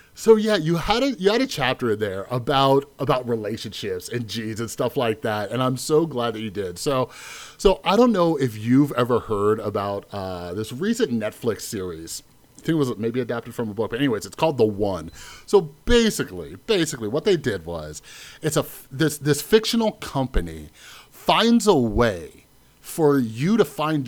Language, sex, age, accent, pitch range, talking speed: English, male, 30-49, American, 110-155 Hz, 190 wpm